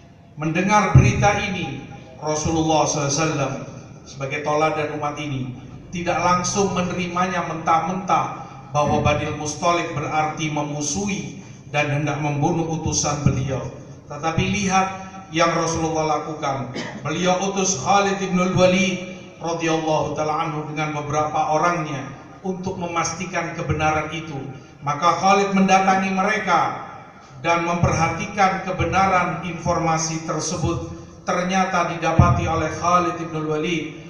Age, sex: 50-69, male